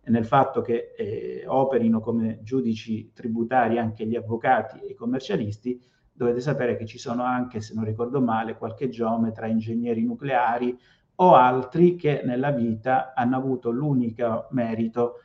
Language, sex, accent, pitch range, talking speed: Italian, male, native, 110-130 Hz, 145 wpm